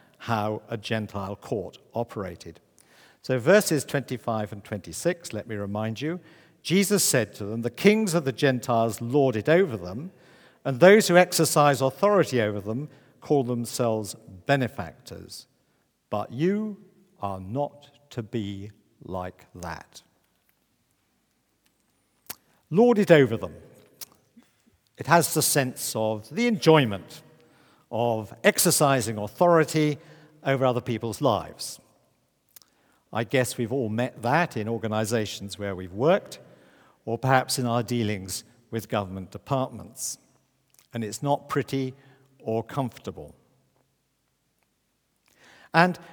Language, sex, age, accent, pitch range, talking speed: English, male, 50-69, British, 110-155 Hz, 115 wpm